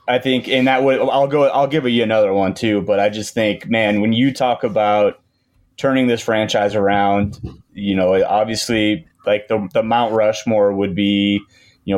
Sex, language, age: male, English, 30-49